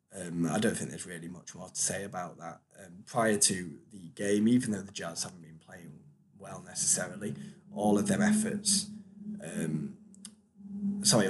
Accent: British